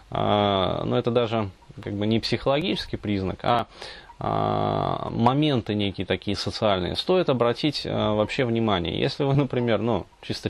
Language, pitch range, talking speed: Russian, 105-135 Hz, 125 wpm